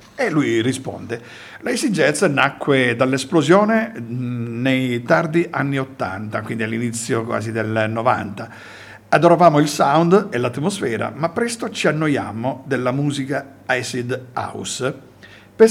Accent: native